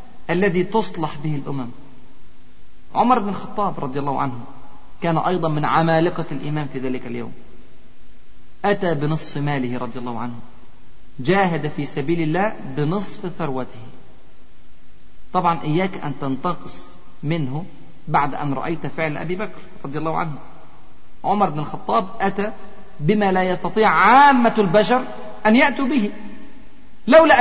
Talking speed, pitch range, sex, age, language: 125 wpm, 150-230 Hz, male, 40-59, Arabic